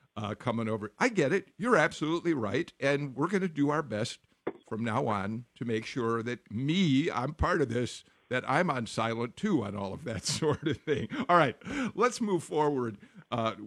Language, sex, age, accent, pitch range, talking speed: English, male, 50-69, American, 115-155 Hz, 200 wpm